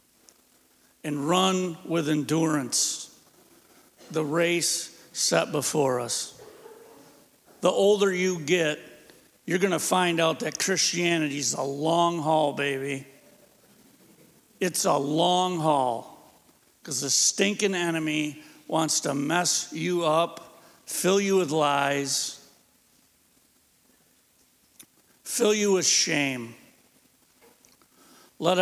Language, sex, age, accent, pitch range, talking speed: English, male, 70-89, American, 150-180 Hz, 95 wpm